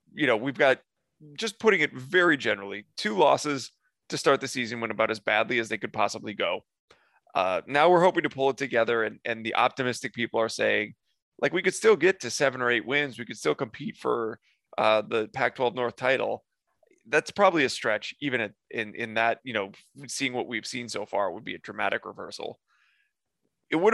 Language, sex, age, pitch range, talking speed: English, male, 20-39, 110-145 Hz, 210 wpm